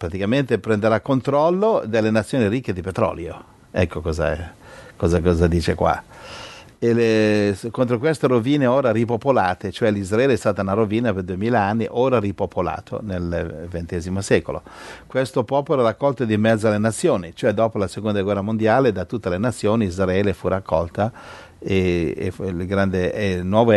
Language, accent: Italian, native